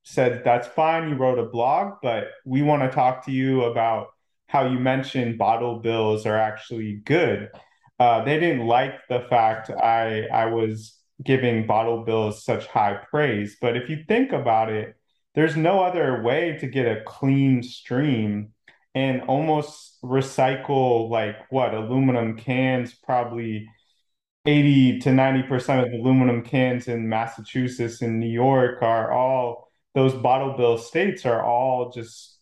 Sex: male